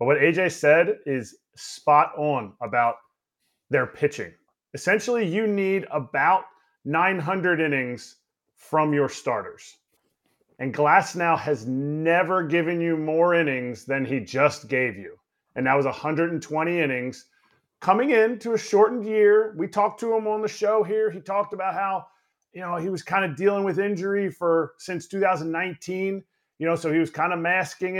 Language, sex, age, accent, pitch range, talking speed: English, male, 30-49, American, 155-190 Hz, 160 wpm